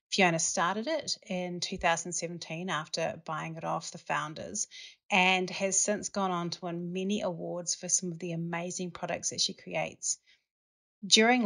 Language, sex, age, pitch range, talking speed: English, female, 40-59, 175-200 Hz, 155 wpm